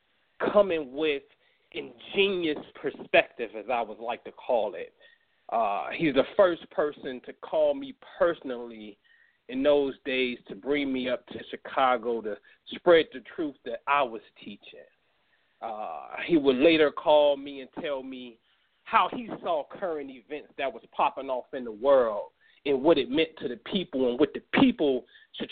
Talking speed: 165 wpm